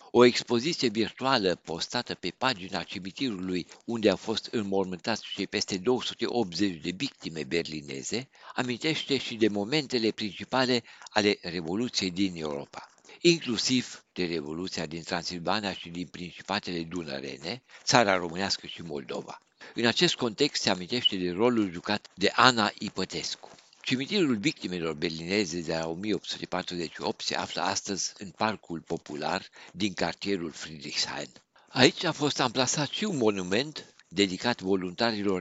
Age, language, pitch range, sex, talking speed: 60-79, Romanian, 90-115 Hz, male, 125 wpm